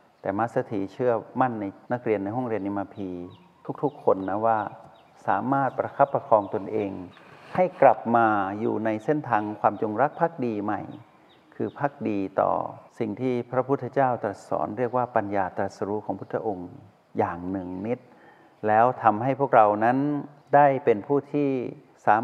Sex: male